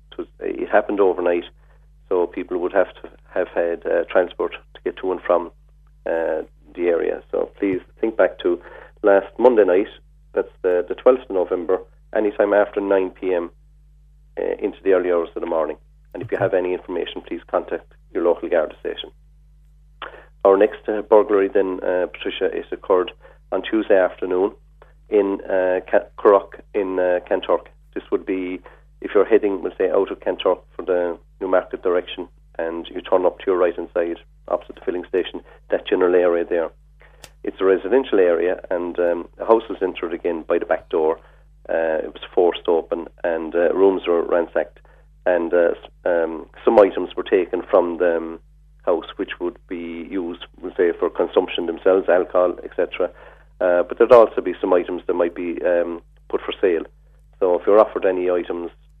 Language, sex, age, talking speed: English, male, 40-59, 175 wpm